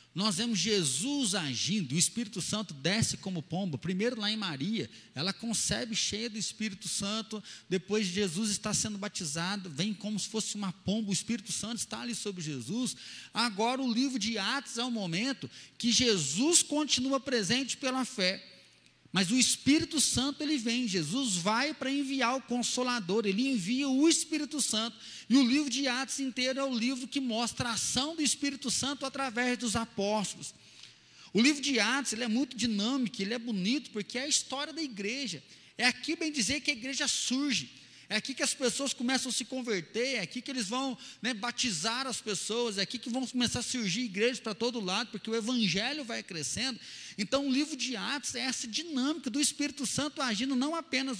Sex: male